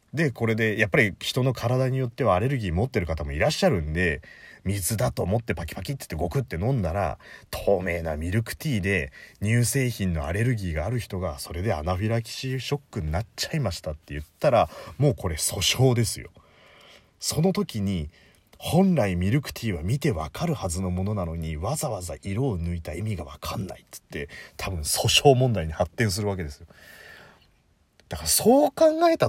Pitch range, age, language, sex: 85-145 Hz, 40-59, Japanese, male